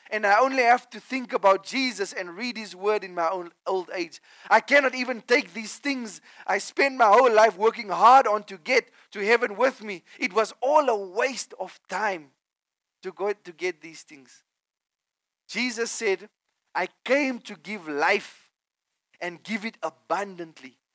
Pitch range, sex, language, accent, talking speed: 200-265 Hz, male, English, South African, 170 wpm